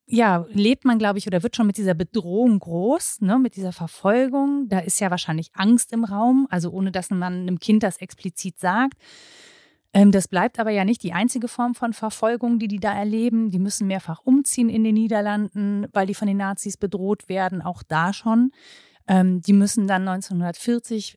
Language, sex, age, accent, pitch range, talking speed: German, female, 30-49, German, 195-235 Hz, 195 wpm